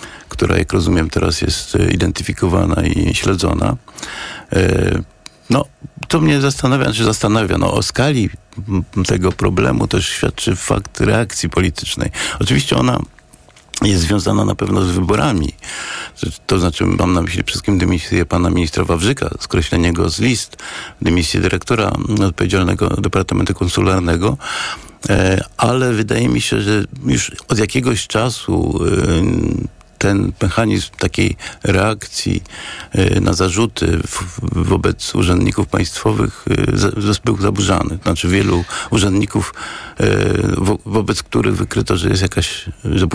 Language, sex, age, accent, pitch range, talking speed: Polish, male, 50-69, native, 90-115 Hz, 120 wpm